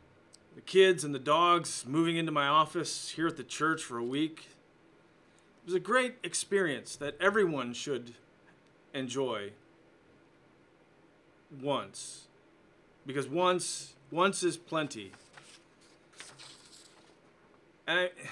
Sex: male